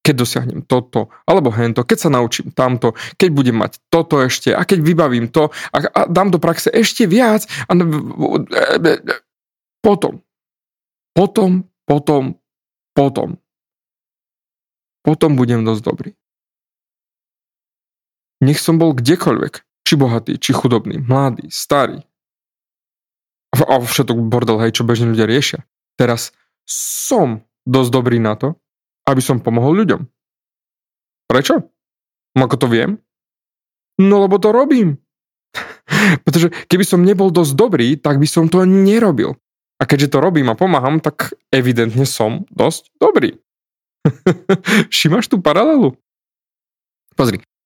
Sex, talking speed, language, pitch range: male, 120 wpm, Slovak, 125-185 Hz